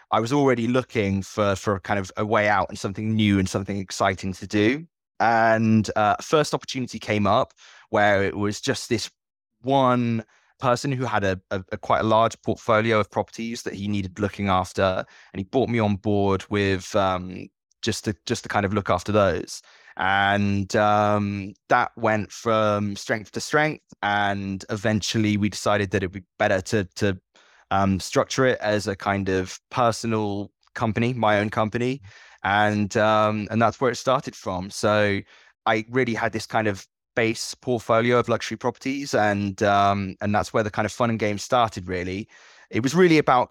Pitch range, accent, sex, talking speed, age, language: 100-115 Hz, British, male, 185 wpm, 20-39, English